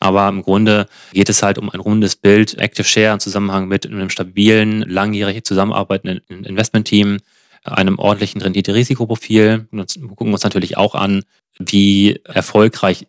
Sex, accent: male, German